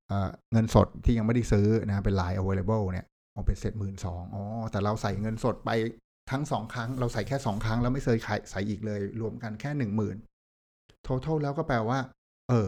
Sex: male